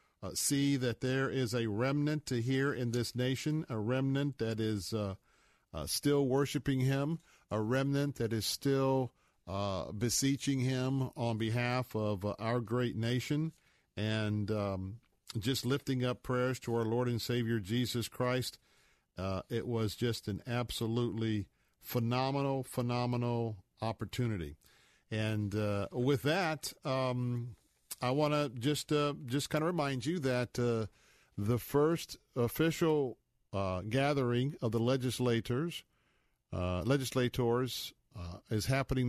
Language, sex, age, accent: English, male, 50-69, American